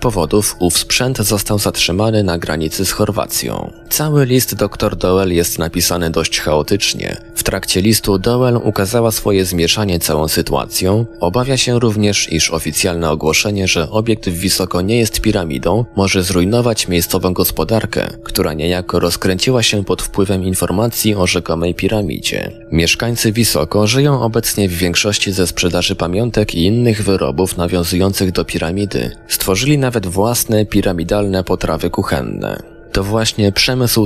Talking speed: 135 wpm